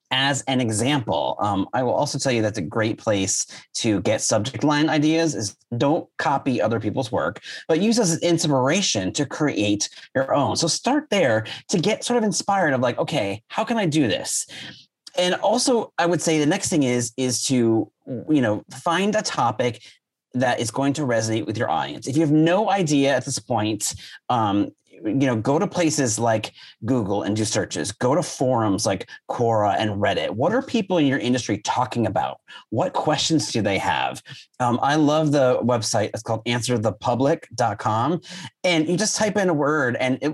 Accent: American